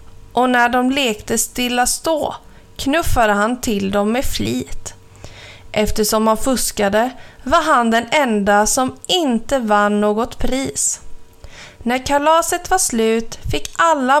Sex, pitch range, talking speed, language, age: female, 205-270 Hz, 125 wpm, Swedish, 30-49